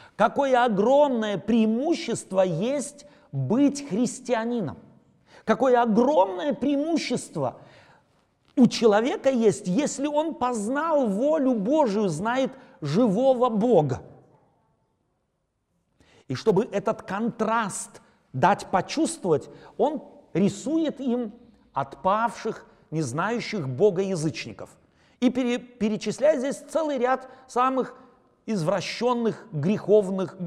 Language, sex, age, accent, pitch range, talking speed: Russian, male, 40-59, native, 170-250 Hz, 80 wpm